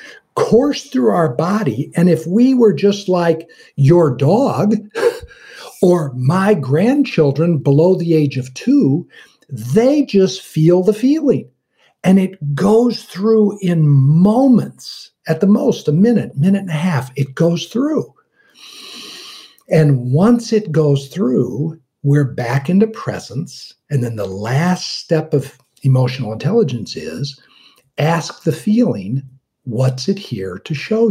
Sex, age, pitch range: male, 60-79, 135-200 Hz